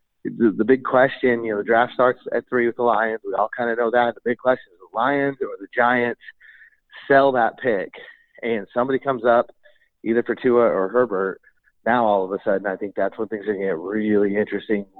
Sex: male